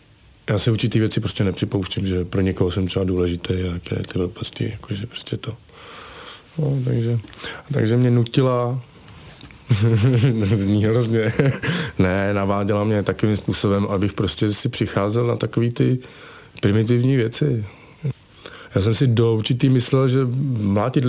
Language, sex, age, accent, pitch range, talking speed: Czech, male, 40-59, native, 105-130 Hz, 135 wpm